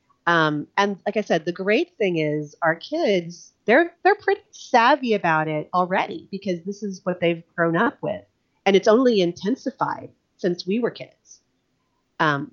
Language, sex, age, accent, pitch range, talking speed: English, female, 40-59, American, 155-195 Hz, 165 wpm